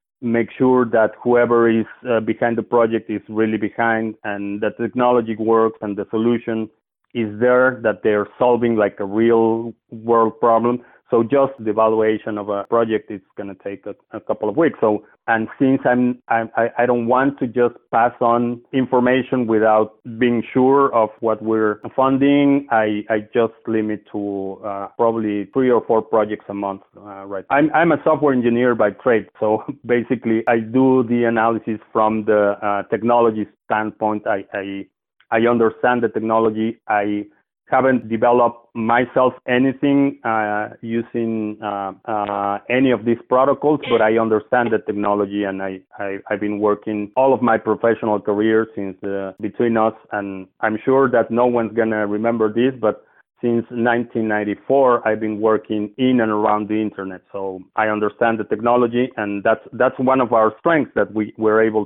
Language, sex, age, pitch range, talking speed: English, male, 30-49, 105-120 Hz, 170 wpm